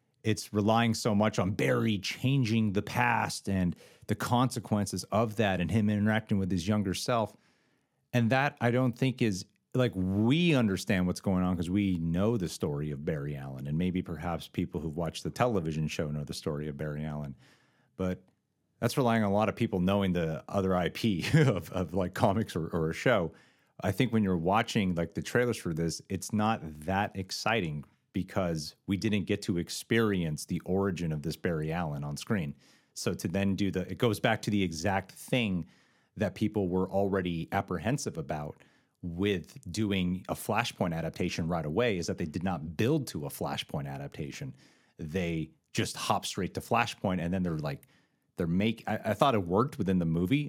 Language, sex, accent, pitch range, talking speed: English, male, American, 85-110 Hz, 190 wpm